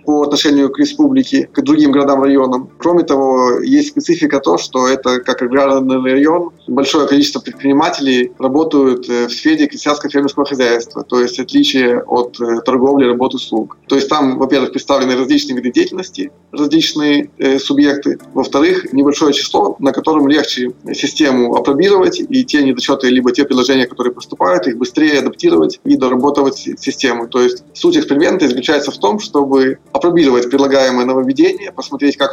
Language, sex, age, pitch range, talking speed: Russian, male, 20-39, 130-160 Hz, 150 wpm